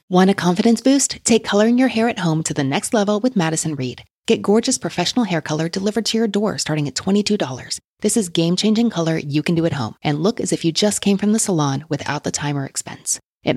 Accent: American